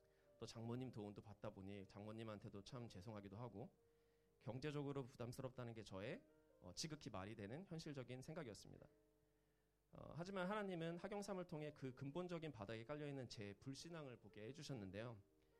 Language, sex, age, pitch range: Korean, male, 30-49, 100-140 Hz